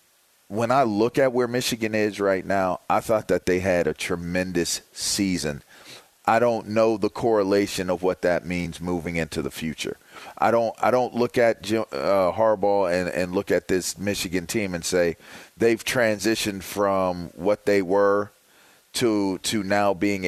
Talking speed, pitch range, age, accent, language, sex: 170 wpm, 90-110 Hz, 40-59, American, English, male